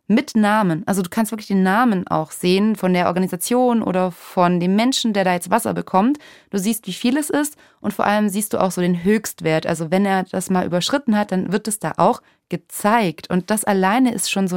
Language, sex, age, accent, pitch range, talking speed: German, female, 30-49, German, 185-230 Hz, 230 wpm